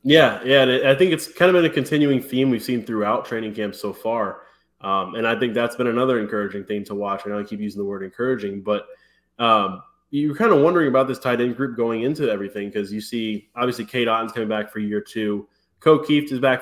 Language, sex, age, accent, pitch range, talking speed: English, male, 20-39, American, 105-120 Hz, 240 wpm